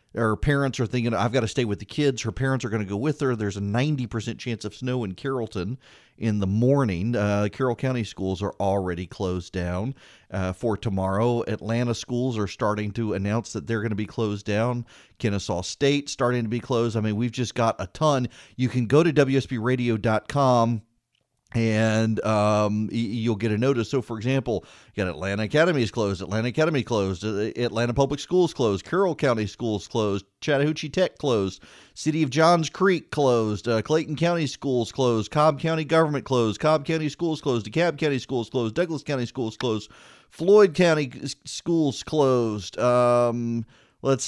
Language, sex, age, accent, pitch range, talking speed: English, male, 40-59, American, 110-140 Hz, 180 wpm